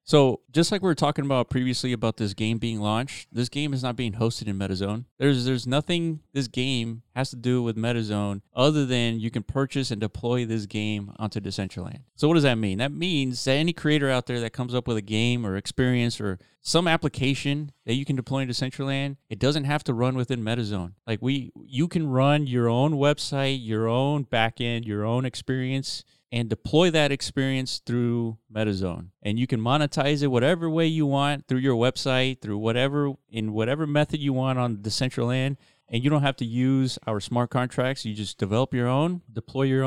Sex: male